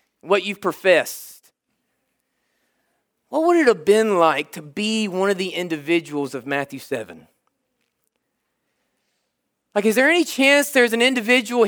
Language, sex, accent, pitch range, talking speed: English, male, American, 185-245 Hz, 135 wpm